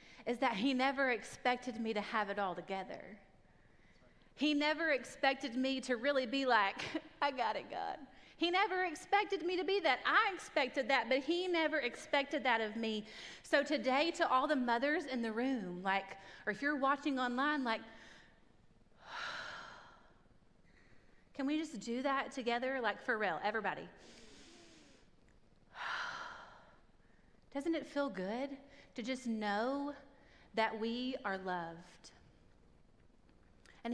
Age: 30-49